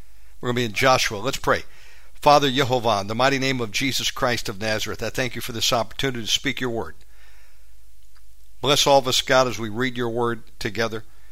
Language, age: English, 60-79